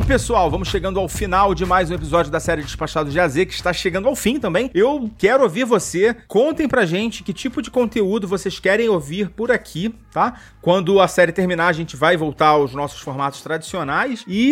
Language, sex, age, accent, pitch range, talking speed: Portuguese, male, 30-49, Brazilian, 155-210 Hz, 205 wpm